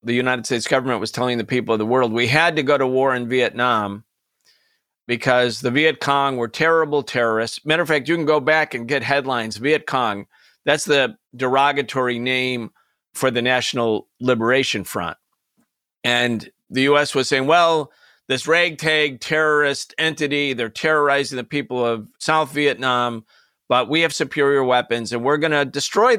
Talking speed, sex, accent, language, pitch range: 170 wpm, male, American, English, 125-165 Hz